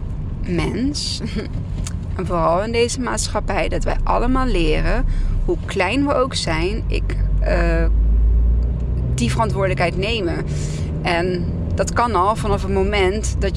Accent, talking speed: Dutch, 120 wpm